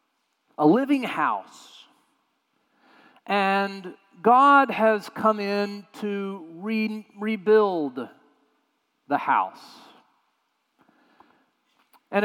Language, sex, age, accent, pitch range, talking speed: English, male, 40-59, American, 145-240 Hz, 65 wpm